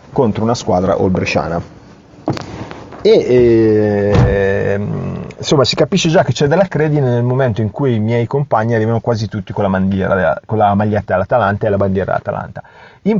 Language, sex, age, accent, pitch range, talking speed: Italian, male, 30-49, native, 100-130 Hz, 170 wpm